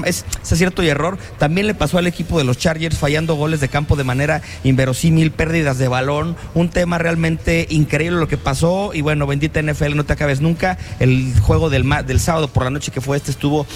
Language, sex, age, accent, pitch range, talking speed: English, male, 30-49, Mexican, 130-170 Hz, 220 wpm